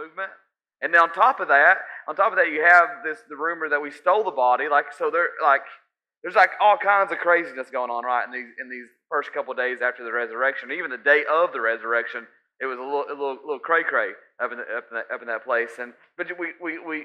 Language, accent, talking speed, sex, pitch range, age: English, American, 260 wpm, male, 125-165 Hz, 30-49